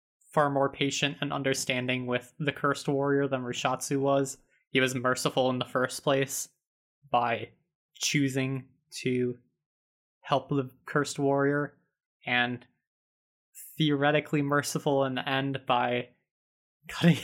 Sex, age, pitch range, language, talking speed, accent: male, 20-39, 125-145 Hz, English, 120 wpm, American